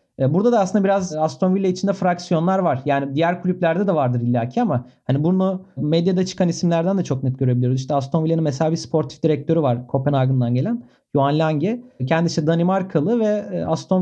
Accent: native